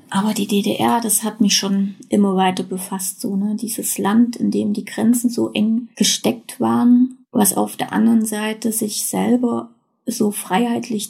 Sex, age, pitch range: female, 30-49, 210-245 Hz